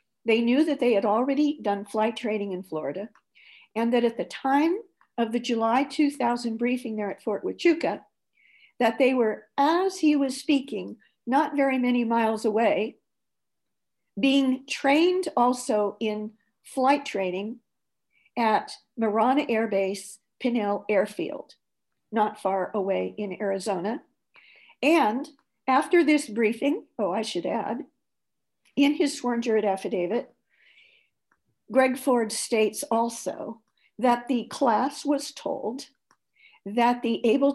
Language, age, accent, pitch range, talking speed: English, 50-69, American, 215-275 Hz, 125 wpm